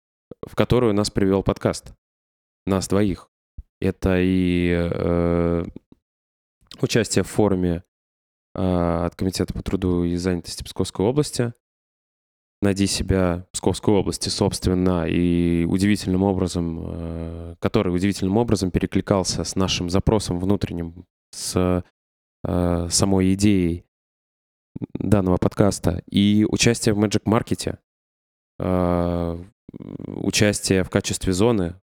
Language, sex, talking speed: Russian, male, 105 wpm